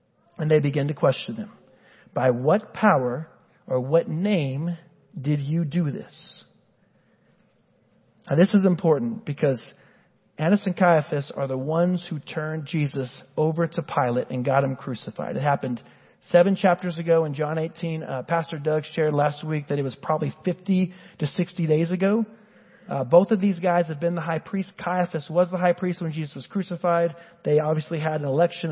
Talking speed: 175 wpm